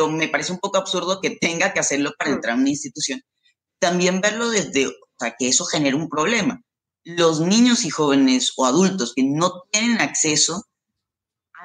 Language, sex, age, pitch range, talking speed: Spanish, female, 20-39, 140-215 Hz, 180 wpm